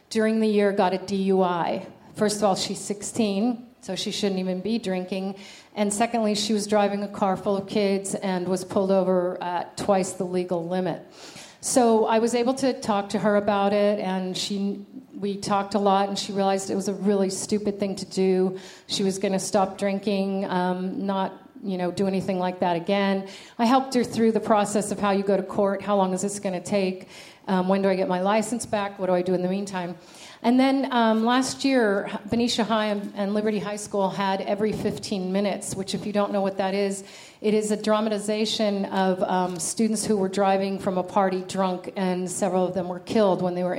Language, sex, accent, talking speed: English, female, American, 215 wpm